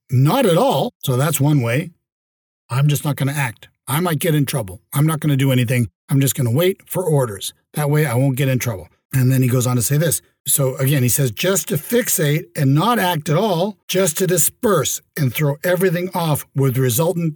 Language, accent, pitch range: English, American, 135-170 Hz